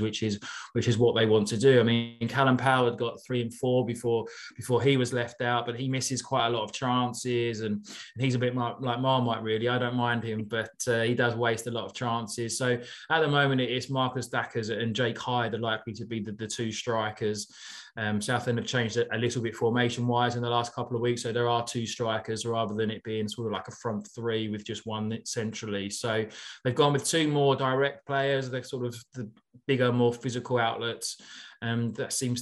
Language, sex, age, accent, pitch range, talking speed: English, male, 20-39, British, 110-125 Hz, 230 wpm